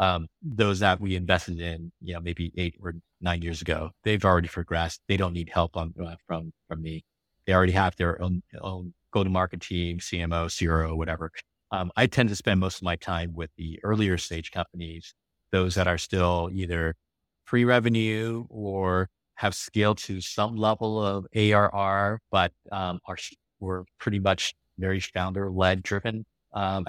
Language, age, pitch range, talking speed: English, 30-49, 85-100 Hz, 175 wpm